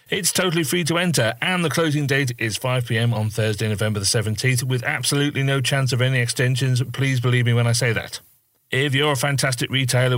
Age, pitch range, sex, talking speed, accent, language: 40-59, 115-135 Hz, male, 205 wpm, British, English